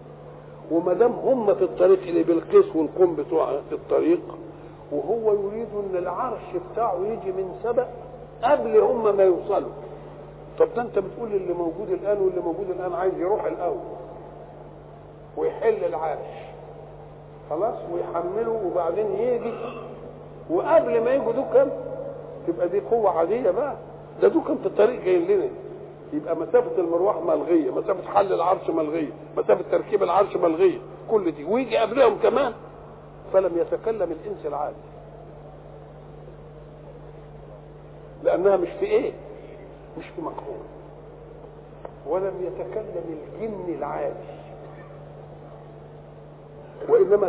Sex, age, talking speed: male, 50-69, 110 wpm